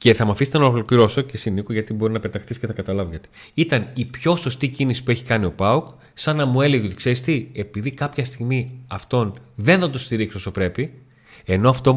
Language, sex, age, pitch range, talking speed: Greek, male, 30-49, 100-130 Hz, 220 wpm